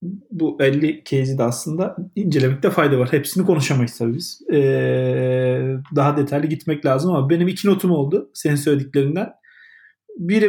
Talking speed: 130 wpm